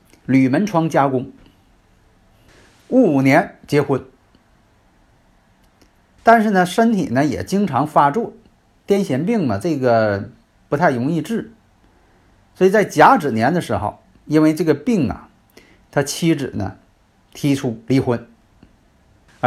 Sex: male